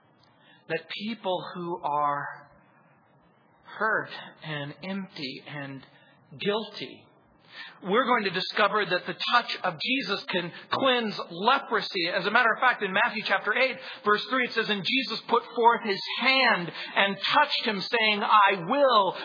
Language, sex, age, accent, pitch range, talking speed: English, male, 40-59, American, 200-265 Hz, 145 wpm